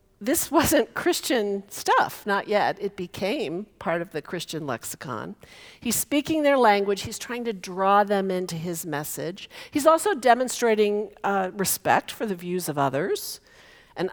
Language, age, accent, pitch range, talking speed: English, 50-69, American, 175-235 Hz, 155 wpm